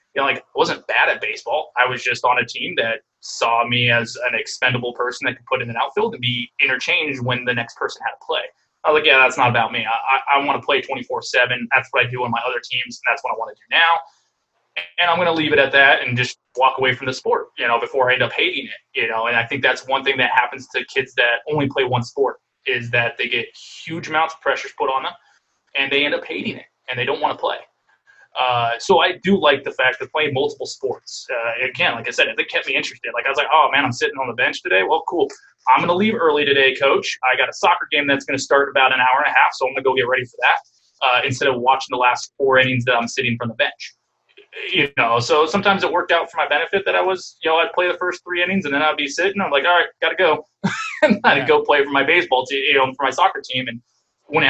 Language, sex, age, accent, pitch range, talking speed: English, male, 20-39, American, 125-175 Hz, 285 wpm